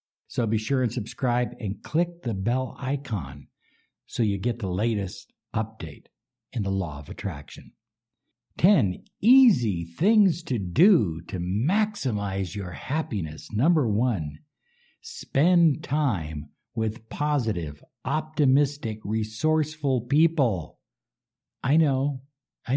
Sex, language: male, English